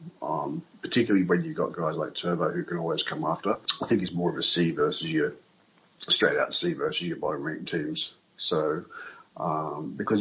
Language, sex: English, male